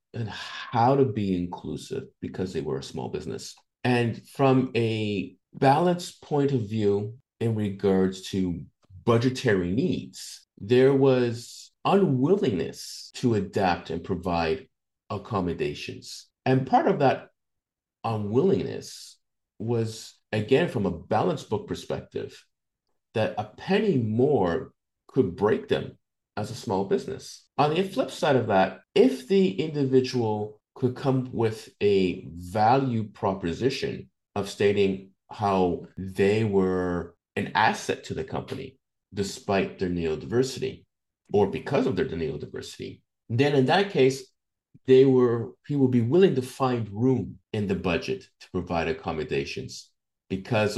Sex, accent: male, American